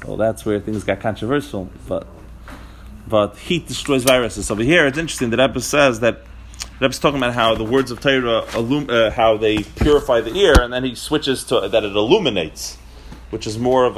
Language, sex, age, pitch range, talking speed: English, male, 30-49, 110-150 Hz, 200 wpm